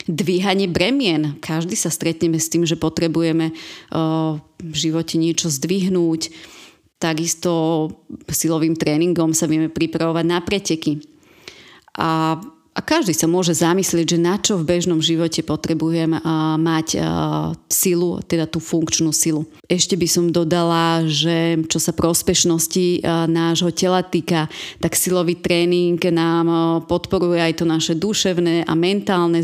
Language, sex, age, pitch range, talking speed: Slovak, female, 30-49, 165-180 Hz, 125 wpm